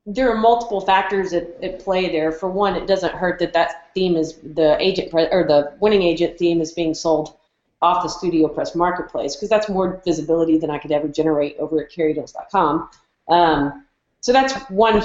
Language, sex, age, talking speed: English, female, 40-59, 195 wpm